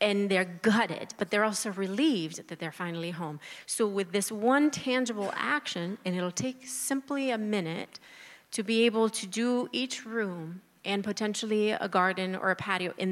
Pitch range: 185-240 Hz